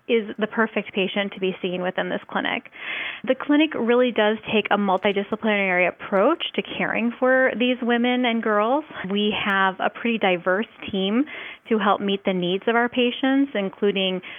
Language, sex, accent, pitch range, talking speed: English, female, American, 190-230 Hz, 165 wpm